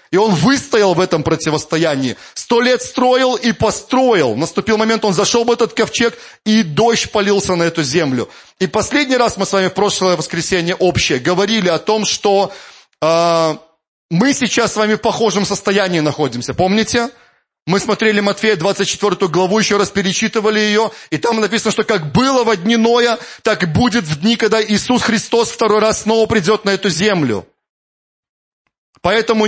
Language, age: Russian, 30-49